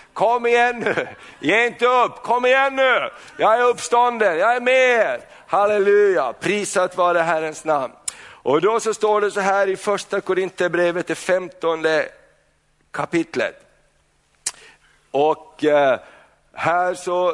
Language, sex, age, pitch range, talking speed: Swedish, male, 60-79, 160-220 Hz, 130 wpm